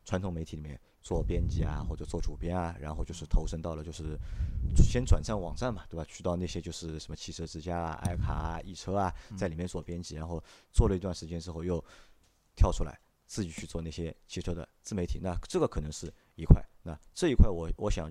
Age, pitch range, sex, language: 30-49, 80-95 Hz, male, Chinese